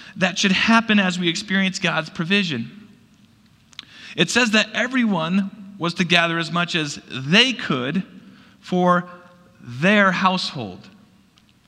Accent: American